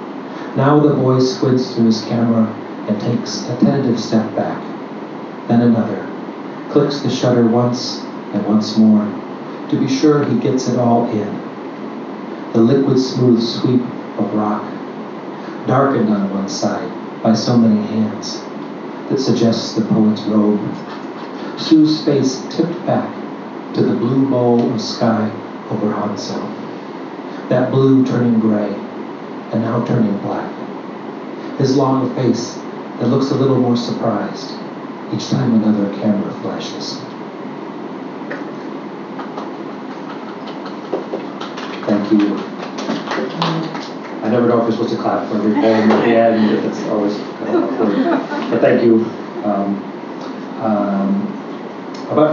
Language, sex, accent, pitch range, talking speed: English, male, American, 105-125 Hz, 125 wpm